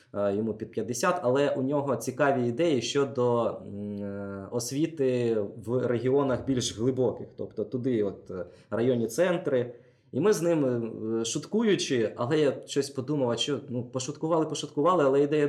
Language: Ukrainian